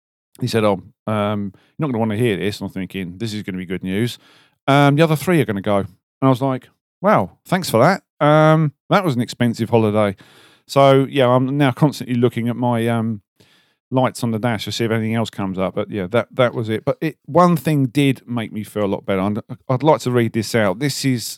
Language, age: English, 40-59